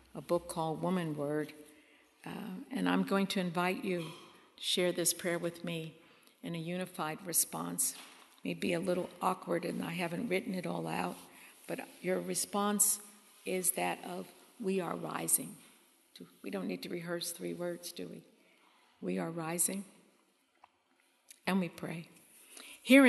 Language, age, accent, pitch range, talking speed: English, 50-69, American, 175-245 Hz, 155 wpm